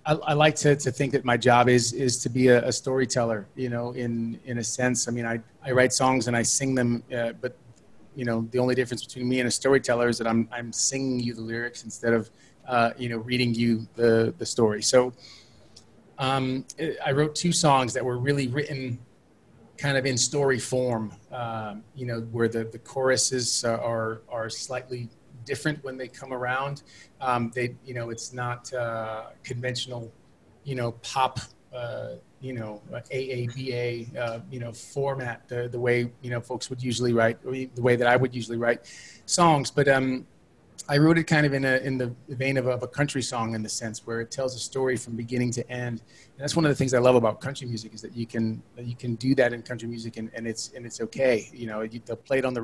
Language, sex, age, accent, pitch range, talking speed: English, male, 30-49, American, 115-130 Hz, 220 wpm